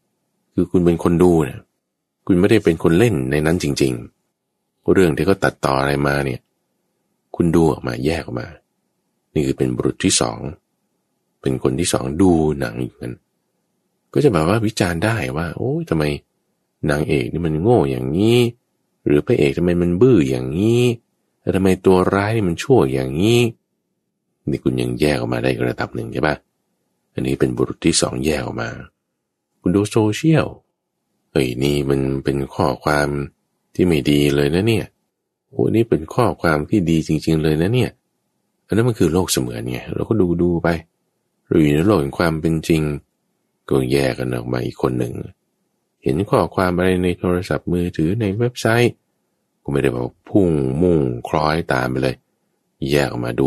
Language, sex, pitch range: English, male, 65-90 Hz